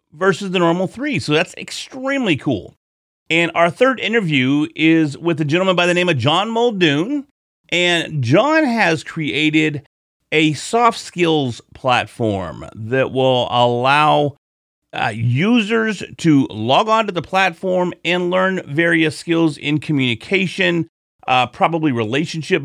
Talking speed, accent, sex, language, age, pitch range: 130 wpm, American, male, English, 40-59, 130-170 Hz